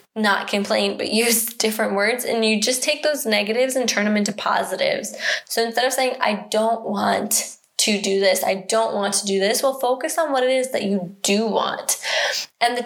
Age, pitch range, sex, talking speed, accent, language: 10-29, 205-235 Hz, female, 210 wpm, American, English